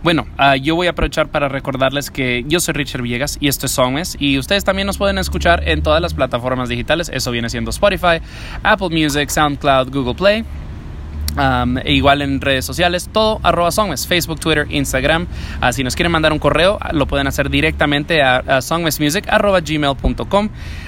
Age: 20-39